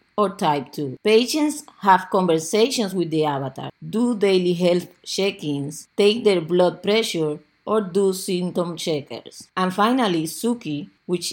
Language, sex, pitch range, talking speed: English, female, 165-210 Hz, 130 wpm